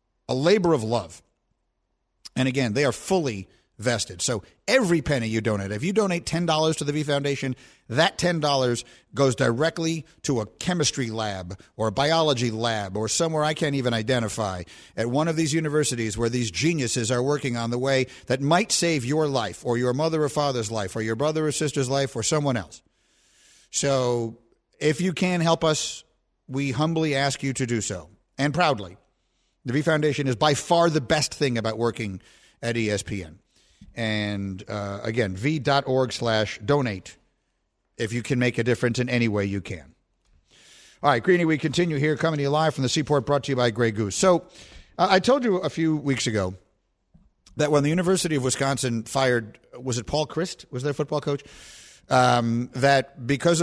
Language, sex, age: English, male, 50-69